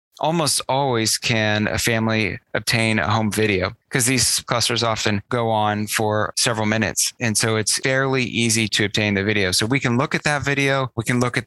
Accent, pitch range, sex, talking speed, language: American, 110-130 Hz, male, 200 wpm, English